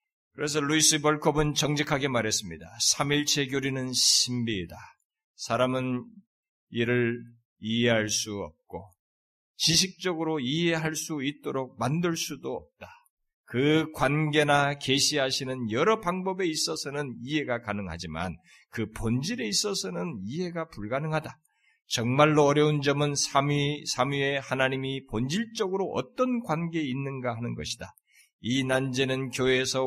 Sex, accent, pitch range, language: male, native, 115-160 Hz, Korean